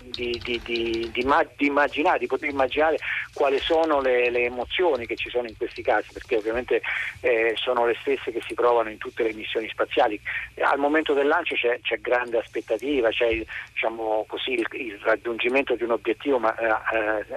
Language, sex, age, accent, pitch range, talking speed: Italian, male, 40-59, native, 115-180 Hz, 185 wpm